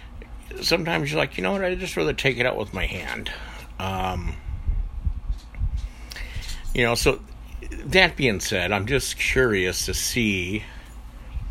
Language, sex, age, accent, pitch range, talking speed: English, male, 50-69, American, 75-100 Hz, 140 wpm